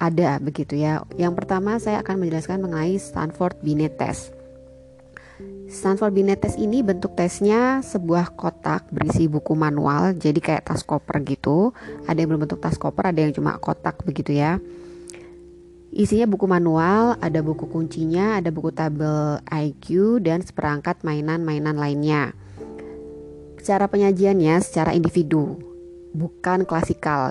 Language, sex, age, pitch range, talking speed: Indonesian, female, 20-39, 150-180 Hz, 130 wpm